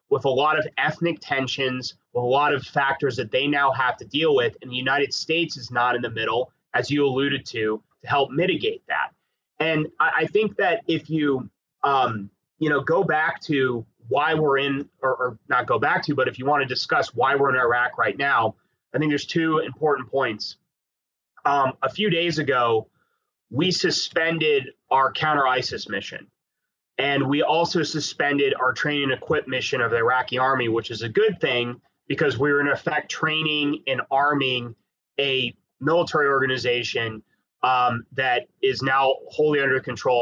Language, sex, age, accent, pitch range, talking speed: English, male, 30-49, American, 125-160 Hz, 180 wpm